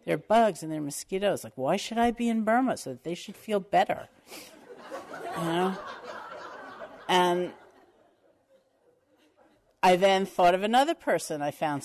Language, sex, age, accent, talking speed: English, female, 50-69, American, 145 wpm